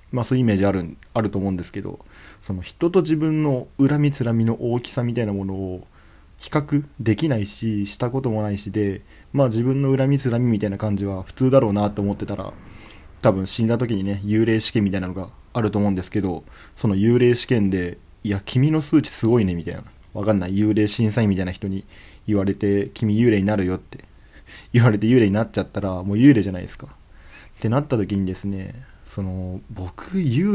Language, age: Japanese, 20-39